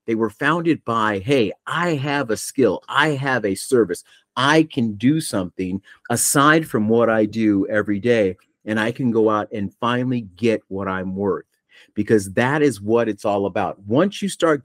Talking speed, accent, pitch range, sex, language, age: 185 wpm, American, 95-115 Hz, male, English, 40-59